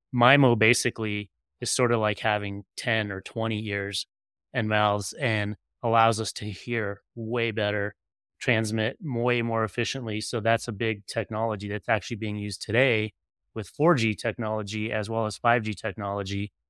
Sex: male